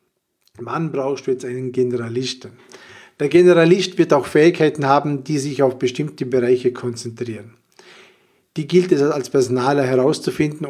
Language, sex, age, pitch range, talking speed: German, male, 50-69, 130-185 Hz, 130 wpm